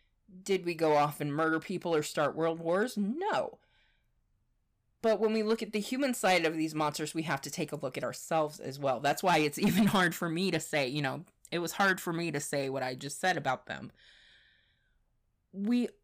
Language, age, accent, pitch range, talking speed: English, 20-39, American, 145-195 Hz, 215 wpm